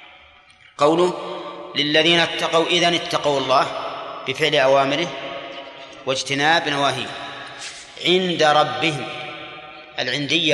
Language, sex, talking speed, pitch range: Arabic, male, 75 wpm, 130-155 Hz